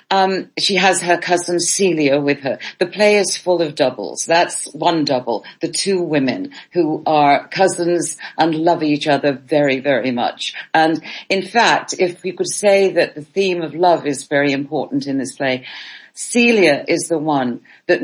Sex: female